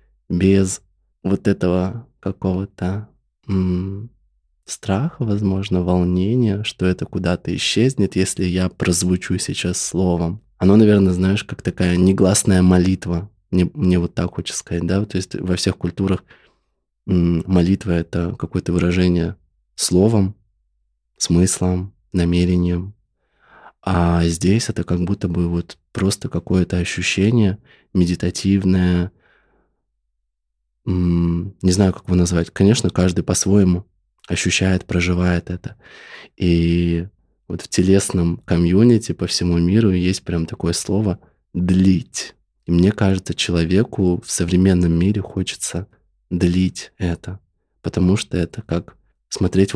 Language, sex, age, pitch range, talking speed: Russian, male, 20-39, 90-100 Hz, 115 wpm